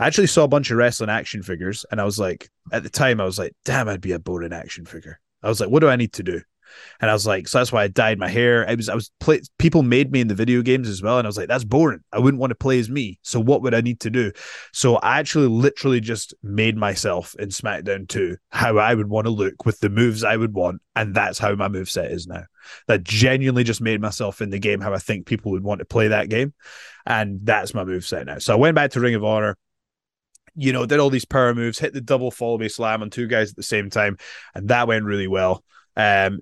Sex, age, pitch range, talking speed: male, 20-39, 100-120 Hz, 275 wpm